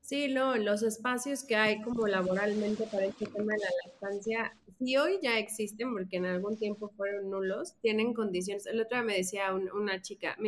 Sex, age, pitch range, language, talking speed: female, 30-49, 210-275 Hz, Spanish, 200 wpm